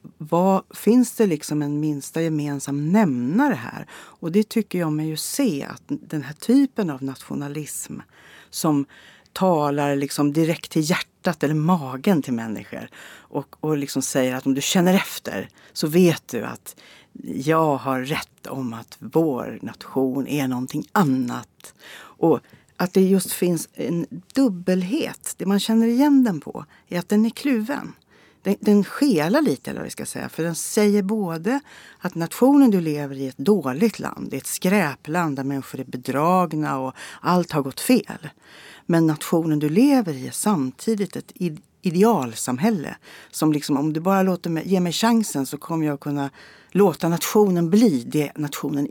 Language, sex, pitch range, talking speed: Swedish, female, 145-210 Hz, 165 wpm